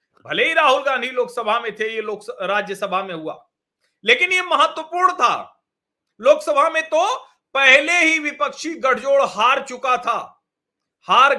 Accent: native